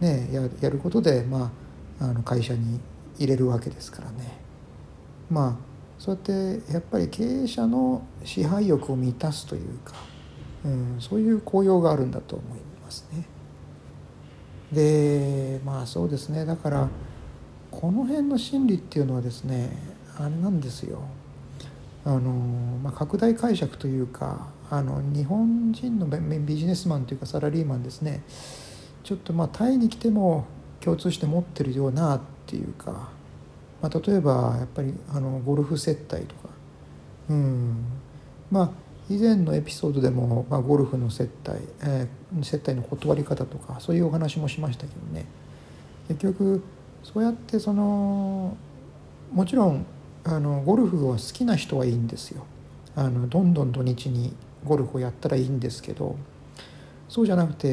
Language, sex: Japanese, male